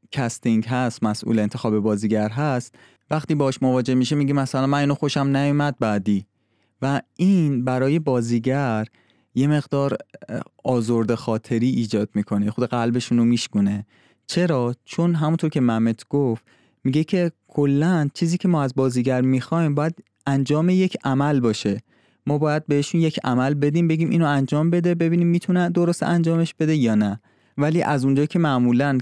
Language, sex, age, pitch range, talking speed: Persian, male, 20-39, 110-145 Hz, 150 wpm